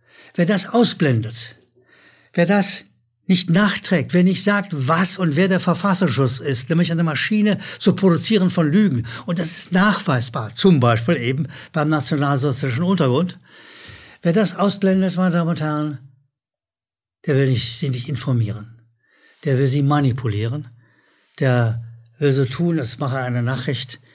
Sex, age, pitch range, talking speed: male, 60-79, 125-160 Hz, 145 wpm